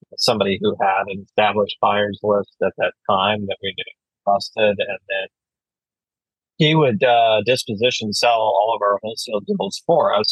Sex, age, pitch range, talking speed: male, 30-49, 100-115 Hz, 155 wpm